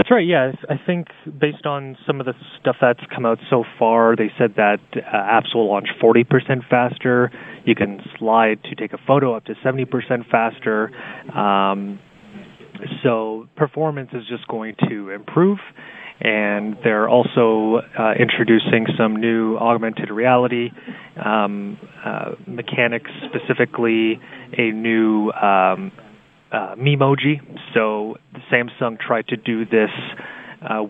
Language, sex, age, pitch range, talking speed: English, male, 20-39, 110-130 Hz, 130 wpm